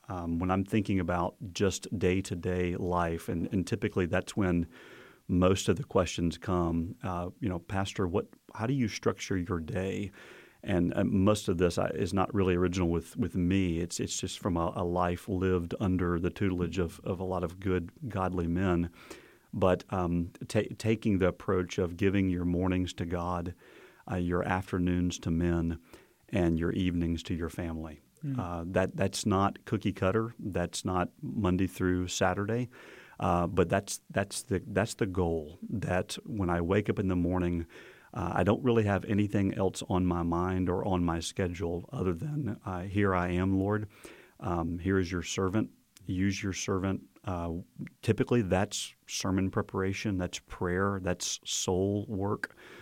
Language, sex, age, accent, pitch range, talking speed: English, male, 40-59, American, 90-100 Hz, 170 wpm